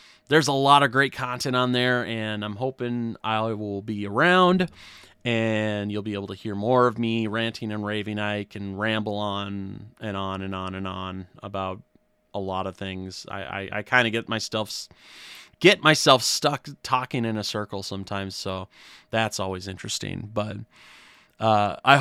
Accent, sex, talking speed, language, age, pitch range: American, male, 170 wpm, English, 30-49, 105-125 Hz